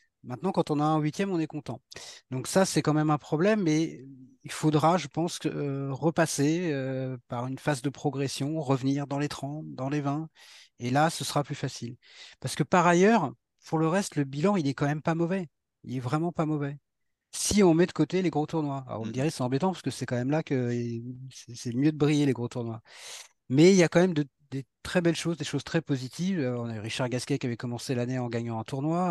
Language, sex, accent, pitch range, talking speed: French, male, French, 130-165 Hz, 240 wpm